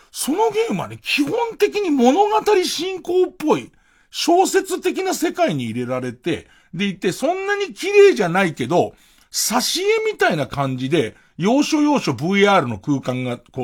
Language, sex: Japanese, male